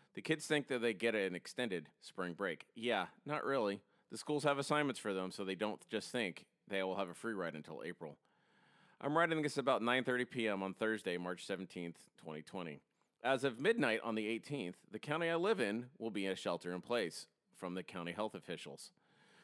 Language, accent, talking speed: English, American, 200 wpm